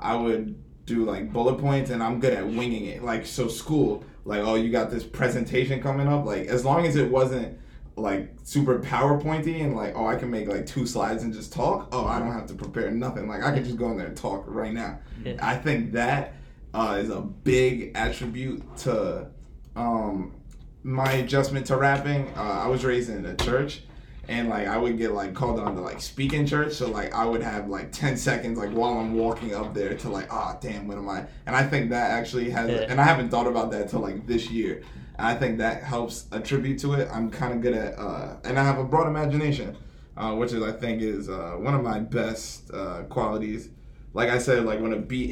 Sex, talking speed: male, 230 wpm